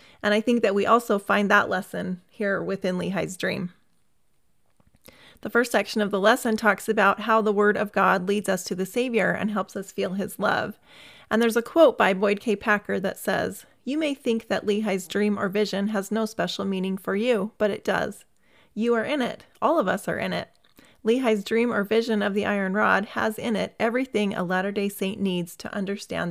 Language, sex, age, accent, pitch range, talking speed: English, female, 30-49, American, 195-225 Hz, 210 wpm